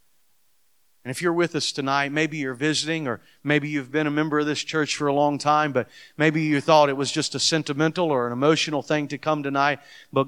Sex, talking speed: male, 230 wpm